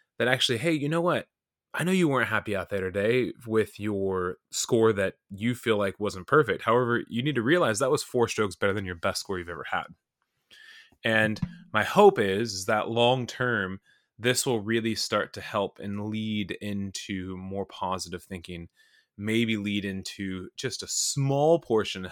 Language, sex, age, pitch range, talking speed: English, male, 20-39, 95-120 Hz, 185 wpm